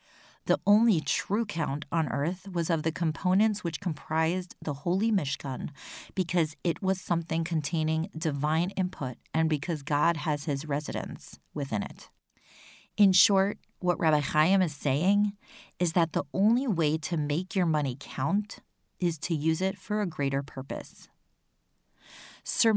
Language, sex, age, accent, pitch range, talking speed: English, female, 40-59, American, 150-190 Hz, 150 wpm